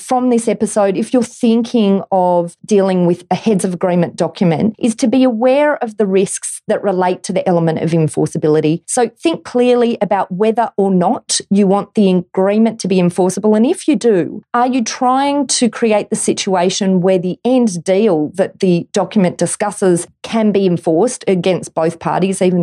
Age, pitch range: 40-59, 170-225 Hz